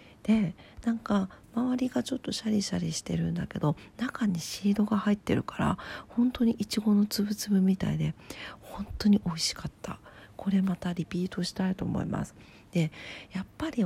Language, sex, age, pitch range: Japanese, female, 40-59, 170-220 Hz